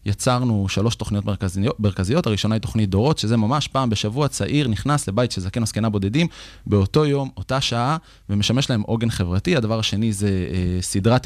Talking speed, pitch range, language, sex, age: 175 wpm, 100-130 Hz, Hebrew, male, 20-39